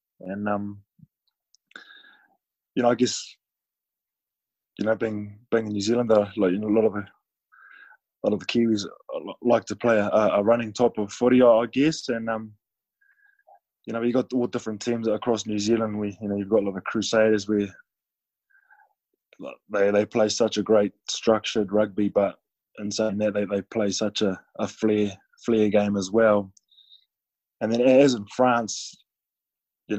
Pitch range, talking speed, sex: 105-120 Hz, 170 wpm, male